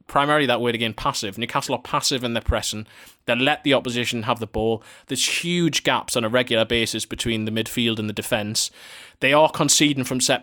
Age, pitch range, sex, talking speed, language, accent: 20-39, 115-135 Hz, male, 205 wpm, English, British